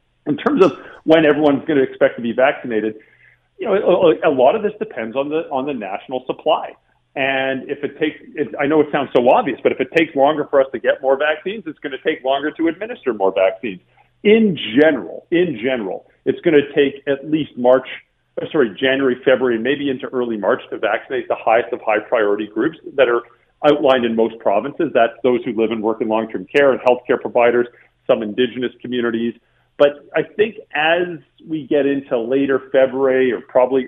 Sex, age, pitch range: male, 40-59, 115-145 Hz